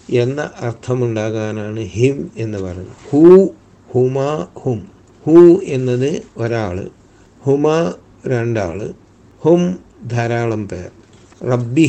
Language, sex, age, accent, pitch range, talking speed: Malayalam, male, 60-79, native, 110-135 Hz, 75 wpm